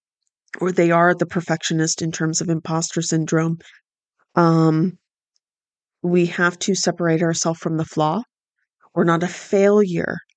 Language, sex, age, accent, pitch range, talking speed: English, female, 30-49, American, 165-185 Hz, 135 wpm